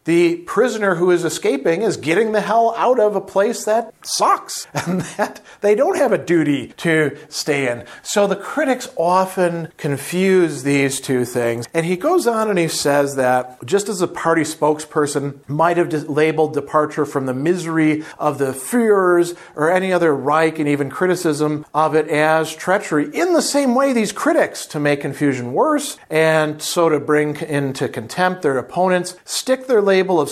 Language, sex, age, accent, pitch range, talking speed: English, male, 50-69, American, 150-200 Hz, 175 wpm